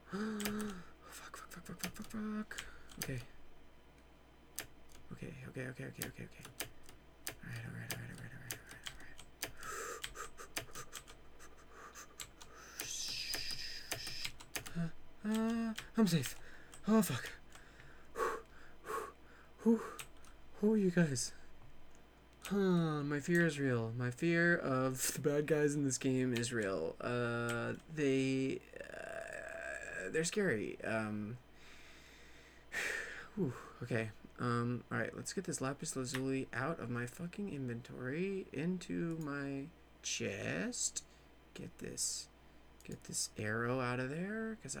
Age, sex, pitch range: 30-49, male, 120-170 Hz